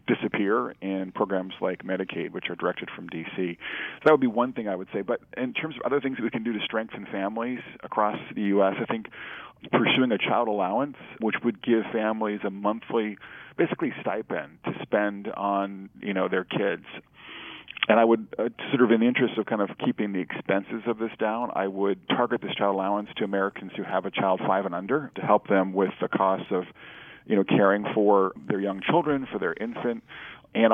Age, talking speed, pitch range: 40-59, 210 wpm, 95-115 Hz